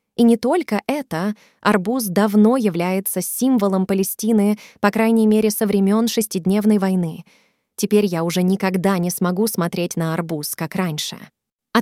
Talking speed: 140 wpm